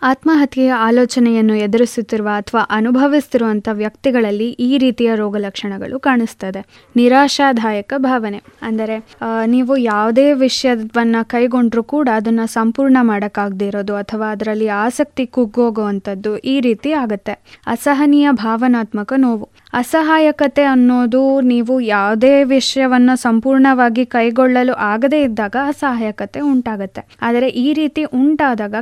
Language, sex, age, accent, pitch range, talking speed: Kannada, female, 20-39, native, 215-270 Hz, 100 wpm